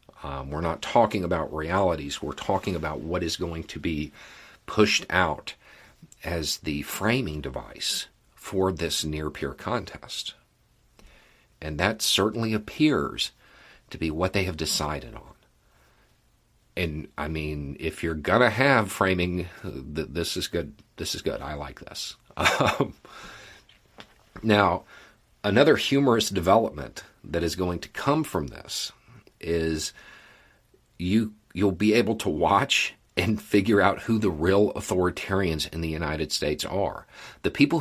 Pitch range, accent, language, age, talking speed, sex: 80-105 Hz, American, English, 50-69, 135 wpm, male